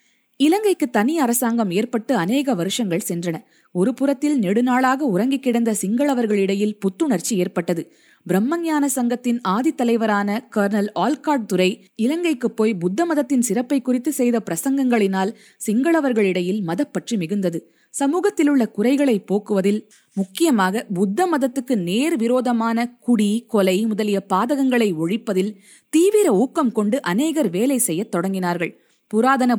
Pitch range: 195-260 Hz